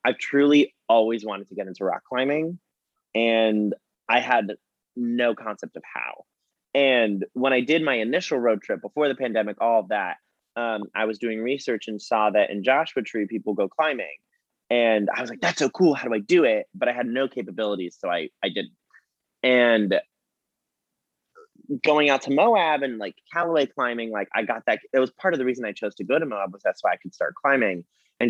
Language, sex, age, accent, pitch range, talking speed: English, male, 20-39, American, 110-135 Hz, 210 wpm